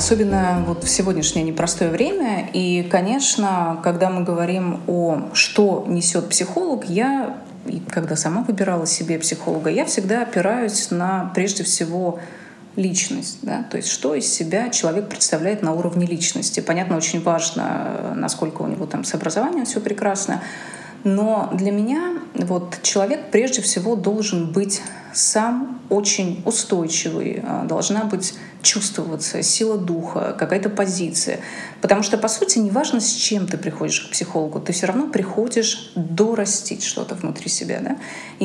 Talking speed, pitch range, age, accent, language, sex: 140 wpm, 175-220 Hz, 20-39, native, Russian, female